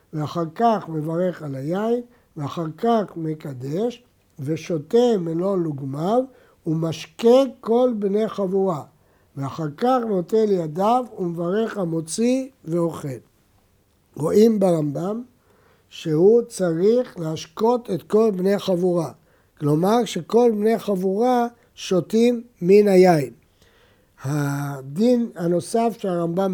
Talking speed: 95 wpm